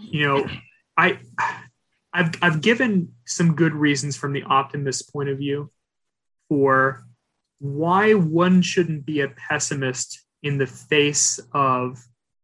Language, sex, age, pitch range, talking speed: English, male, 30-49, 130-150 Hz, 125 wpm